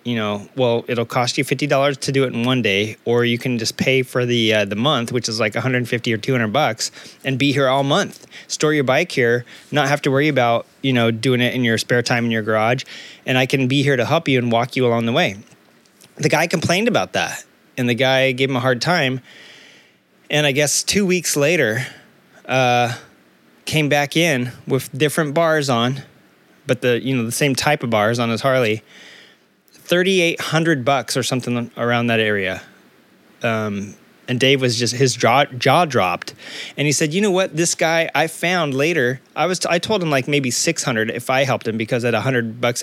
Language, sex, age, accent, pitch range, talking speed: English, male, 20-39, American, 120-150 Hz, 225 wpm